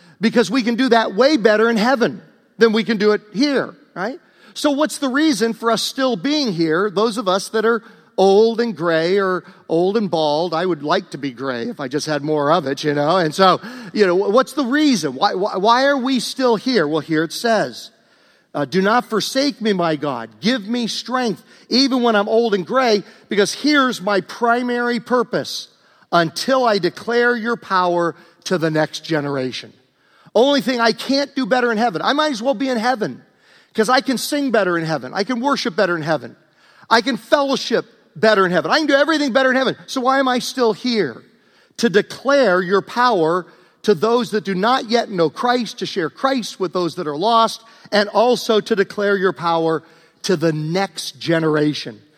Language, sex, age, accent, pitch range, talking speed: English, male, 50-69, American, 175-245 Hz, 205 wpm